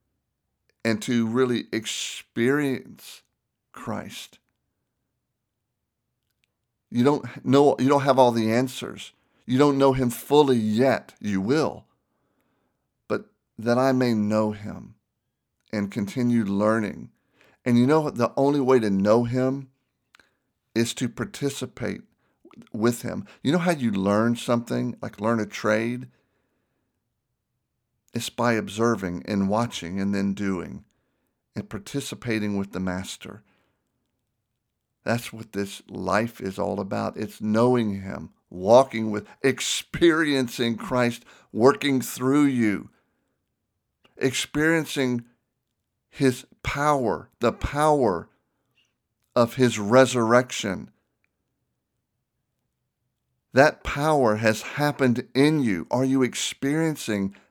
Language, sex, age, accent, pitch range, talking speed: English, male, 50-69, American, 110-130 Hz, 105 wpm